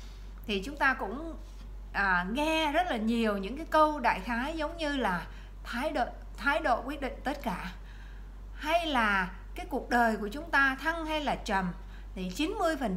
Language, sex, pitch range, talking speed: Vietnamese, female, 220-305 Hz, 185 wpm